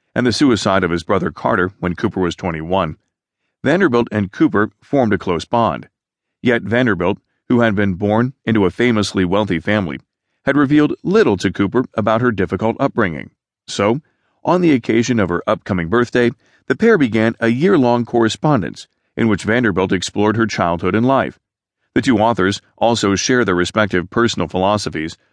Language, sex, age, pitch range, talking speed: English, male, 40-59, 95-120 Hz, 165 wpm